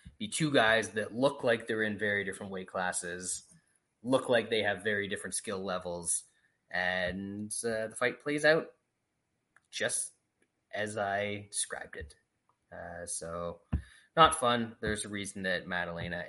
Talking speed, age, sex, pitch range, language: 145 wpm, 20-39, male, 90-115 Hz, English